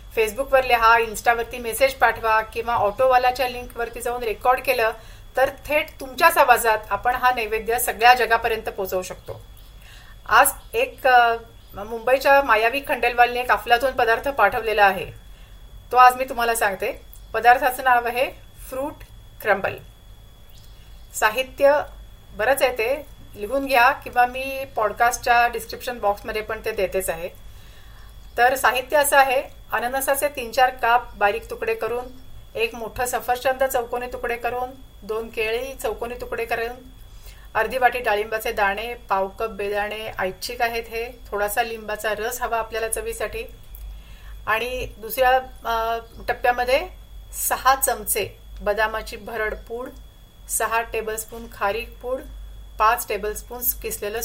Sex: female